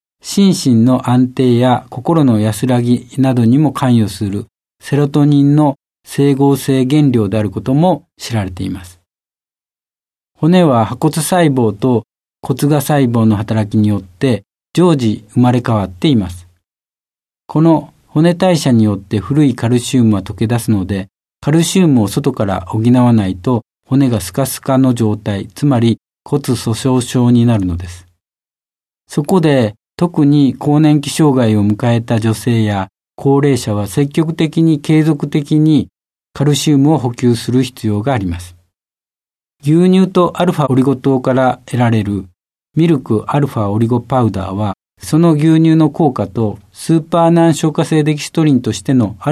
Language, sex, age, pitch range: Japanese, male, 50-69, 110-150 Hz